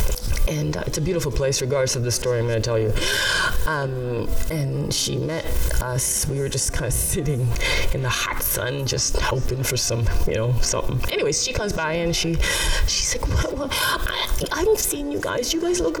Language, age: English, 20-39